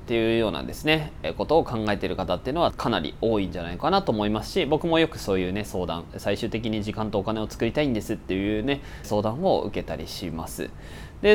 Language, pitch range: Japanese, 95-160 Hz